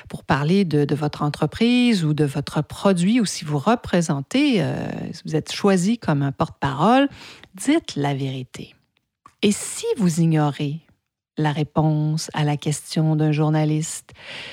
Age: 50-69